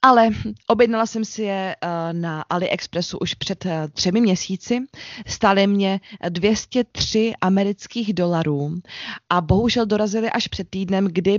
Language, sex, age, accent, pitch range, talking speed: Czech, female, 20-39, native, 165-215 Hz, 120 wpm